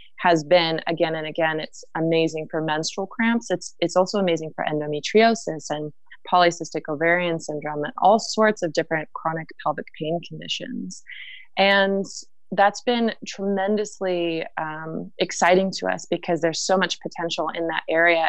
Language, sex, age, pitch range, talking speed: English, female, 20-39, 160-190 Hz, 150 wpm